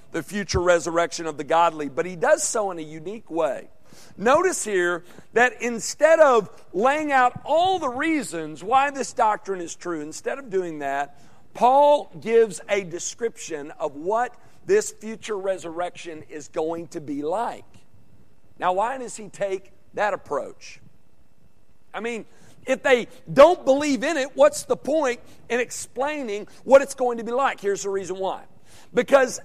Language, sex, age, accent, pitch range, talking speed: English, male, 50-69, American, 175-245 Hz, 160 wpm